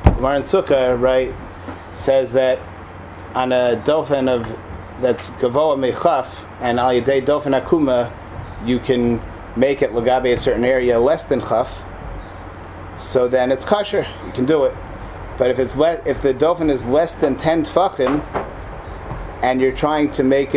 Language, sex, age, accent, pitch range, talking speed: English, male, 30-49, American, 110-145 Hz, 145 wpm